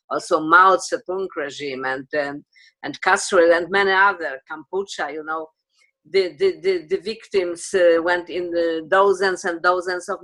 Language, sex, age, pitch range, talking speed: English, female, 50-69, 175-225 Hz, 160 wpm